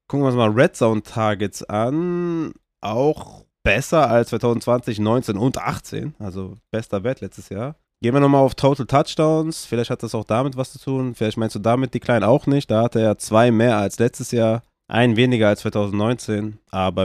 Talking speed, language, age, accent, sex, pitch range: 195 wpm, German, 20-39, German, male, 110-140 Hz